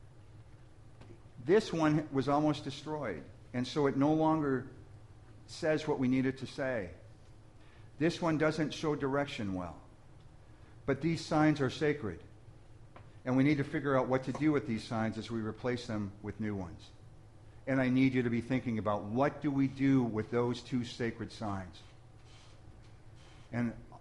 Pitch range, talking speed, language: 110-140 Hz, 160 wpm, English